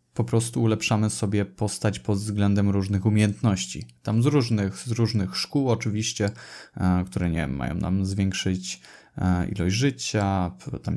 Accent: native